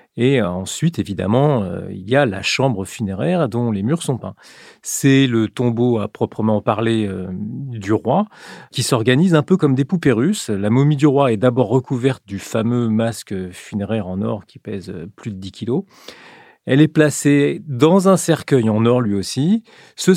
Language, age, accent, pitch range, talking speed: French, 40-59, French, 110-155 Hz, 185 wpm